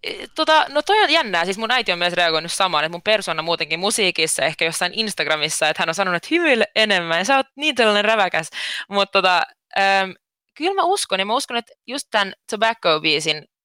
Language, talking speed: Finnish, 190 wpm